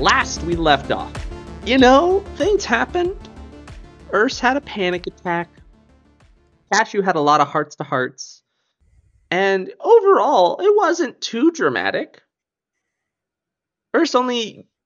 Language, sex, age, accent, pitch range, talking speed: English, male, 20-39, American, 130-205 Hz, 115 wpm